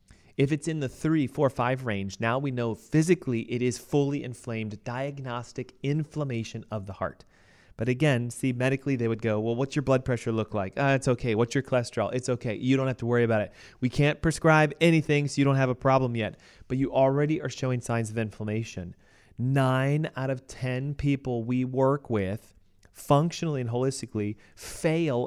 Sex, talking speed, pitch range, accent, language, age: male, 190 wpm, 115-150 Hz, American, English, 30-49